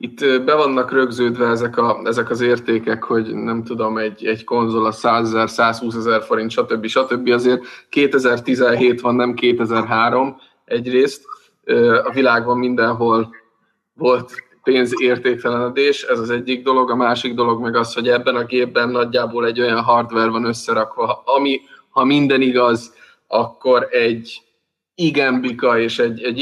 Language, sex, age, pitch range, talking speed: Czech, male, 20-39, 115-135 Hz, 135 wpm